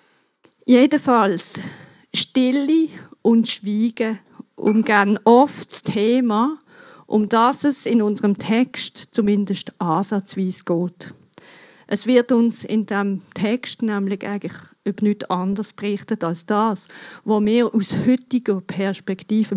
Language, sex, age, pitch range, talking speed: German, female, 50-69, 185-235 Hz, 110 wpm